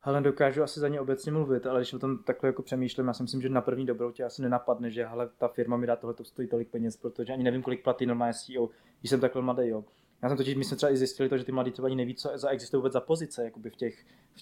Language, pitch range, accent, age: Czech, 120-135 Hz, native, 20-39